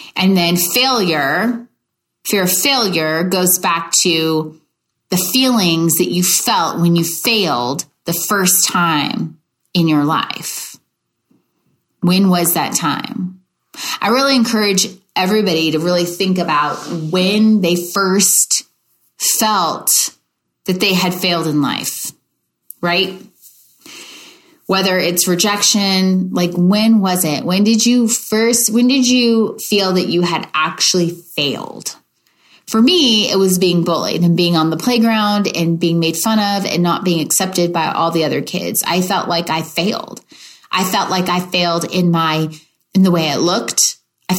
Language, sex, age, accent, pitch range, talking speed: English, female, 30-49, American, 170-210 Hz, 150 wpm